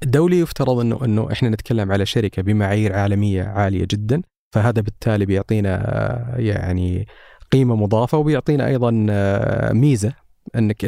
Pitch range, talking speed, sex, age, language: 105-125 Hz, 120 wpm, male, 30-49, Arabic